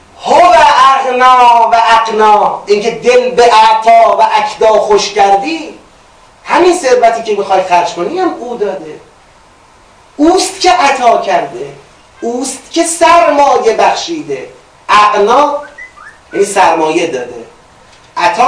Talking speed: 105 wpm